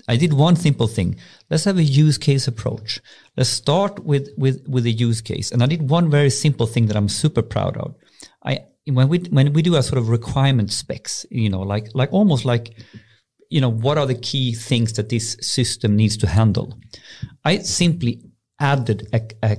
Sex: male